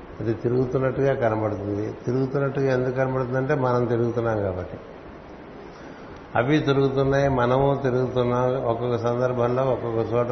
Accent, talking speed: native, 100 wpm